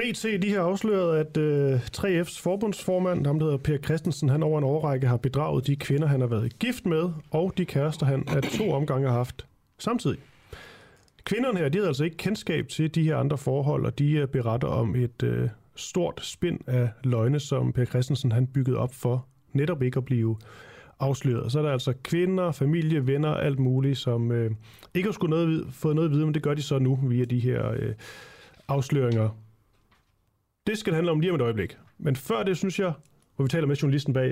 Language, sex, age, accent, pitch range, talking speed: Danish, male, 30-49, native, 125-160 Hz, 205 wpm